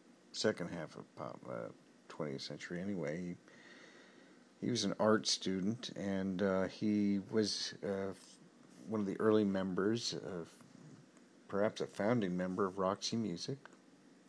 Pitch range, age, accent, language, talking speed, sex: 90-105 Hz, 50-69, American, English, 140 wpm, male